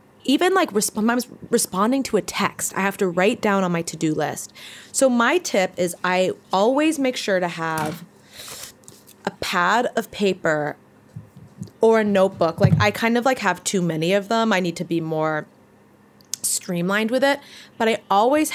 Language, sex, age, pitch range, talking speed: English, female, 20-39, 175-220 Hz, 180 wpm